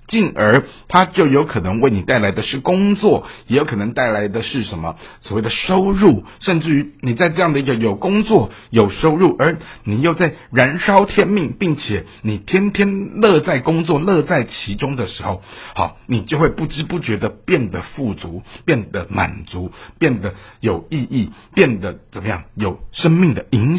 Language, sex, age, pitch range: Chinese, male, 60-79, 105-155 Hz